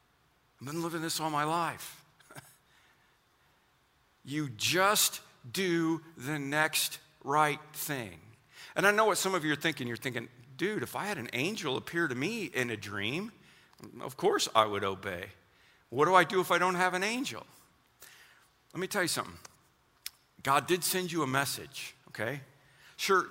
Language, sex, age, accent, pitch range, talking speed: English, male, 50-69, American, 125-165 Hz, 165 wpm